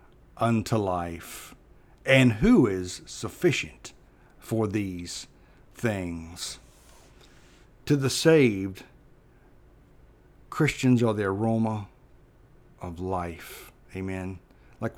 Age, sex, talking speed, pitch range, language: 60-79, male, 80 wpm, 105-135 Hz, English